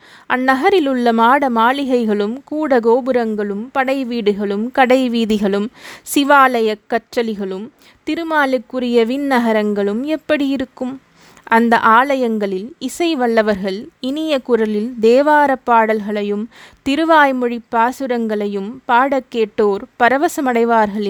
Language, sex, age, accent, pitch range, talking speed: Tamil, female, 20-39, native, 215-270 Hz, 75 wpm